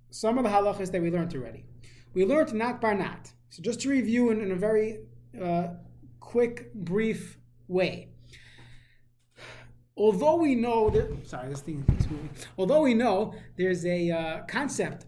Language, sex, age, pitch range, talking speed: English, male, 30-49, 175-245 Hz, 165 wpm